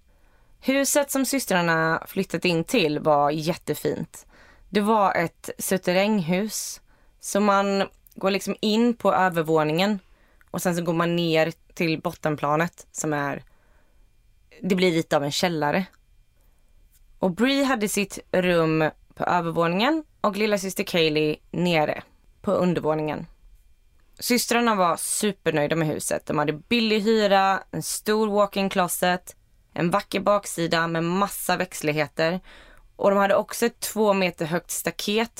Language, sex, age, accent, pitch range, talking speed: Swedish, female, 20-39, native, 160-205 Hz, 130 wpm